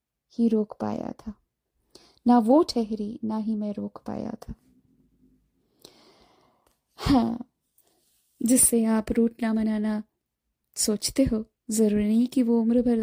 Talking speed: 120 wpm